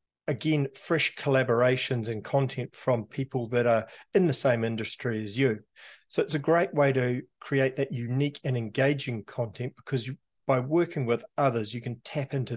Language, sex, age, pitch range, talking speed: English, male, 40-59, 120-145 Hz, 175 wpm